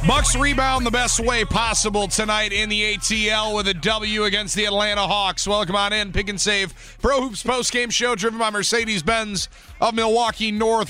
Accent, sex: American, male